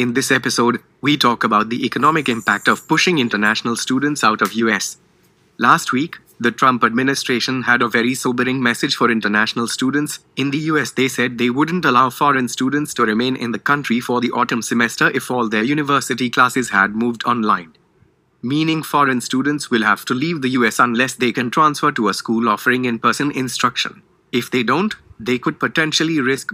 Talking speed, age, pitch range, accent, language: 185 wpm, 30-49, 115-135 Hz, Indian, English